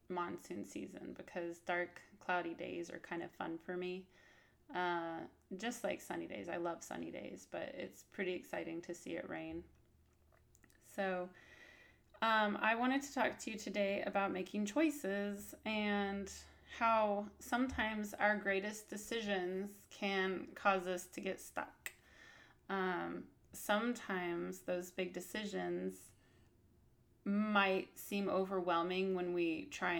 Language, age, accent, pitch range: English, 20-39, American, 175-200 Hz